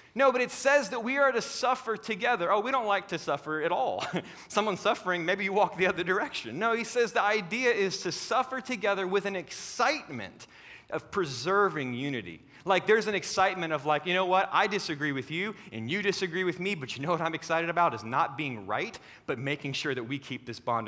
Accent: American